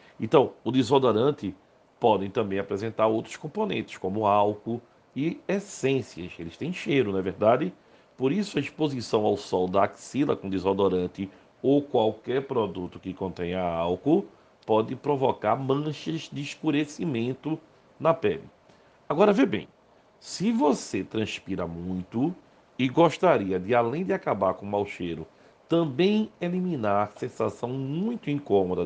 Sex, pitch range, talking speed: male, 100-150 Hz, 135 wpm